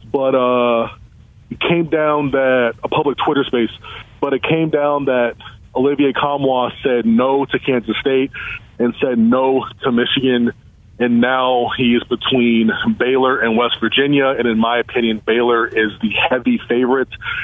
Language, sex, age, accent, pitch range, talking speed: English, male, 20-39, American, 115-140 Hz, 160 wpm